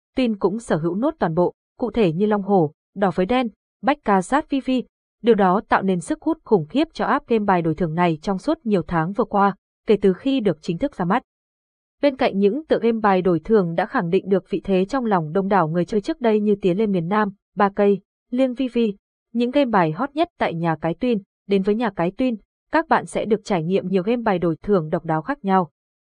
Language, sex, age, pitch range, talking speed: Vietnamese, female, 20-39, 185-240 Hz, 250 wpm